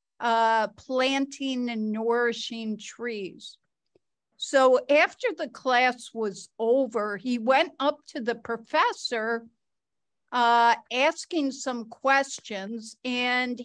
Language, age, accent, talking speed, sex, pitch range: English, 50-69, American, 95 wpm, female, 225-280 Hz